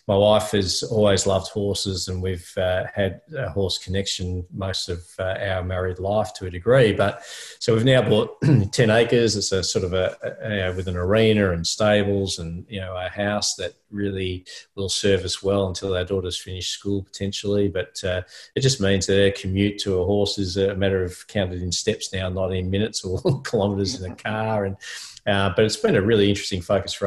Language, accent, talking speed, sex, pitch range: English, Australian, 210 wpm, male, 90-100 Hz